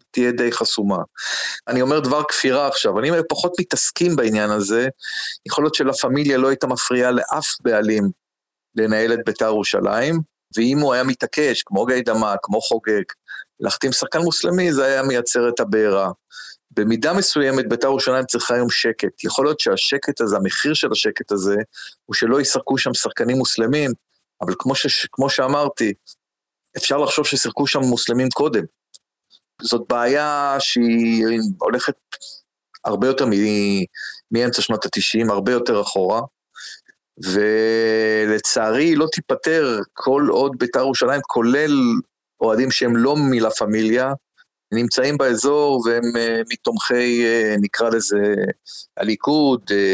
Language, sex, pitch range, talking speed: Hebrew, male, 110-135 Hz, 130 wpm